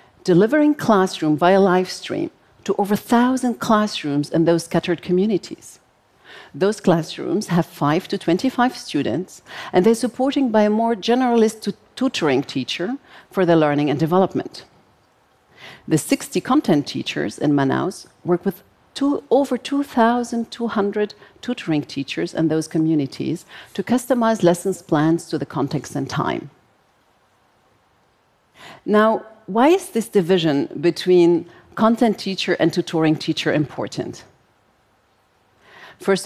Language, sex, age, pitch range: Korean, female, 50-69, 160-230 Hz